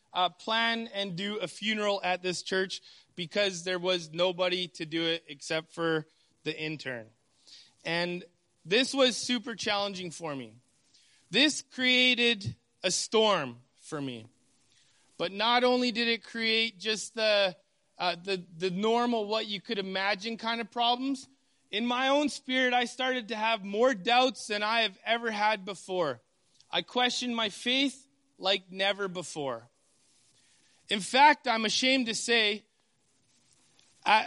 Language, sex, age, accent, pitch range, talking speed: English, male, 30-49, American, 165-230 Hz, 145 wpm